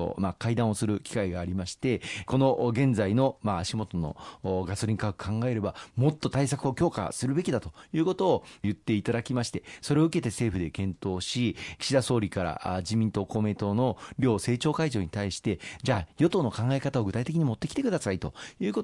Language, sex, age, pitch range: Japanese, male, 40-59, 100-140 Hz